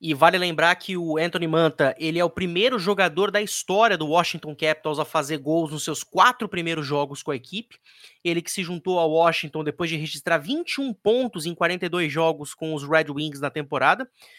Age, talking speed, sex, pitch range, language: 20-39, 200 wpm, male, 155-205 Hz, Portuguese